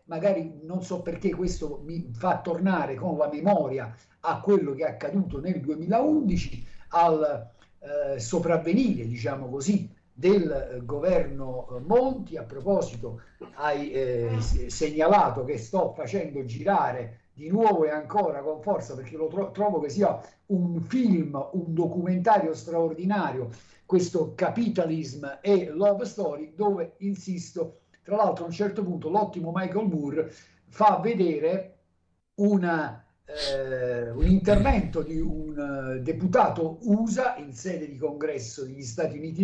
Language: Italian